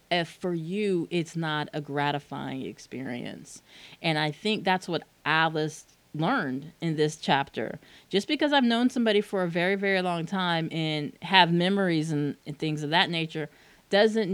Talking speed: 165 wpm